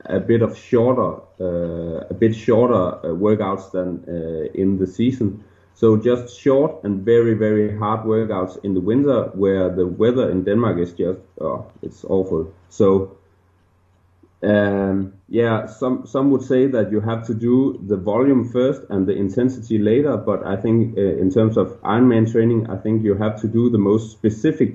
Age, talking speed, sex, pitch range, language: 30-49, 175 wpm, male, 95-115 Hz, English